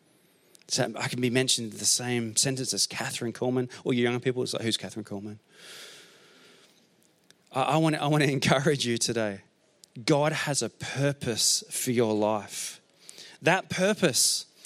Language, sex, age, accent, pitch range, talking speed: English, male, 30-49, Australian, 135-185 Hz, 155 wpm